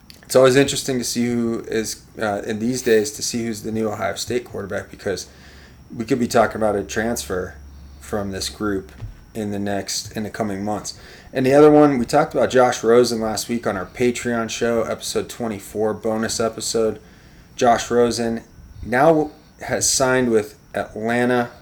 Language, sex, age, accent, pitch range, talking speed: English, male, 30-49, American, 105-120 Hz, 170 wpm